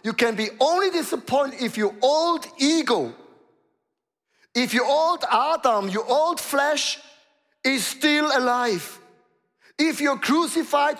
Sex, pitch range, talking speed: male, 205-285 Hz, 120 wpm